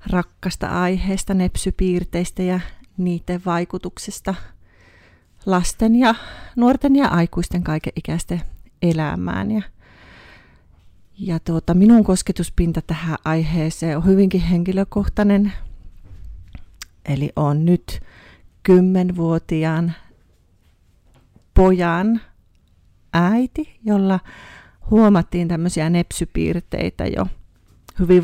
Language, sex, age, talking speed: Finnish, female, 40-59, 75 wpm